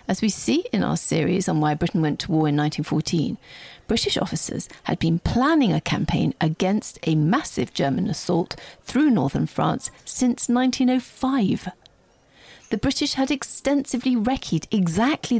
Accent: British